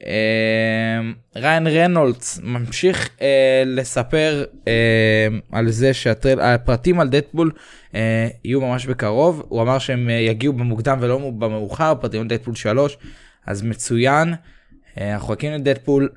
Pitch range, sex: 105-135 Hz, male